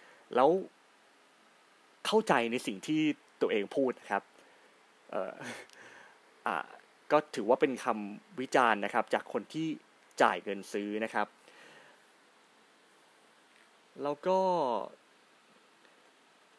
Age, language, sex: 20-39, Thai, male